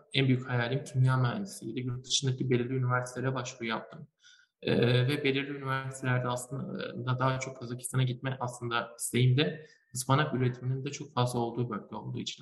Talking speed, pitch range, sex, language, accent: 155 wpm, 120-140 Hz, male, Turkish, native